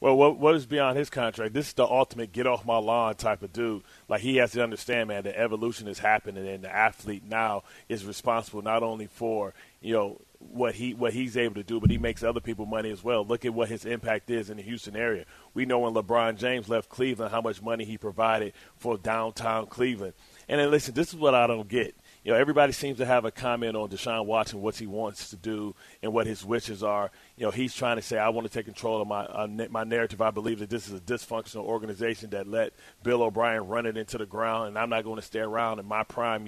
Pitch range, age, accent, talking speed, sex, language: 110-125 Hz, 30-49, American, 245 wpm, male, English